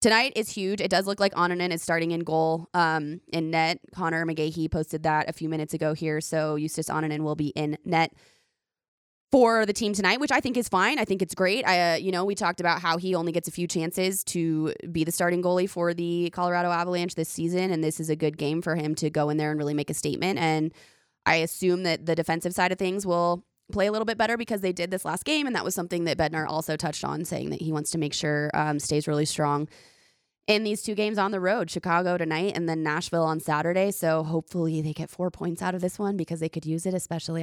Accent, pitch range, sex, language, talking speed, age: American, 155-185 Hz, female, English, 250 wpm, 20-39